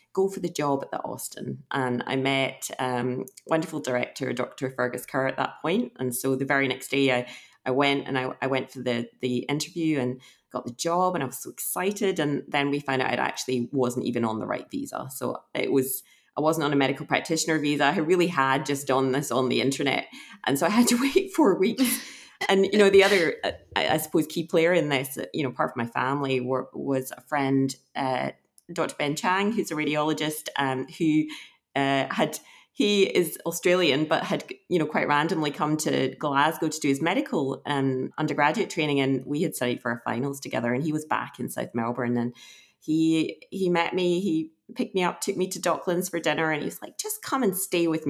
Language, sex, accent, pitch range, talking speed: English, female, British, 130-170 Hz, 220 wpm